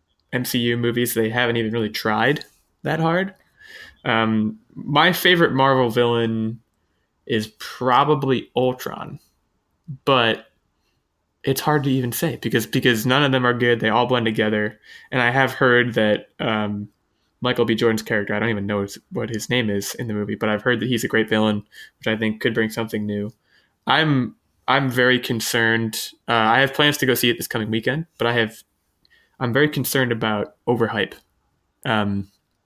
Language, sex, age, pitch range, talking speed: English, male, 20-39, 110-130 Hz, 175 wpm